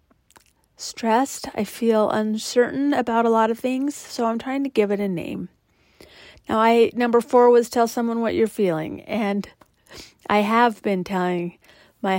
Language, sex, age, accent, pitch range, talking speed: English, female, 40-59, American, 190-230 Hz, 160 wpm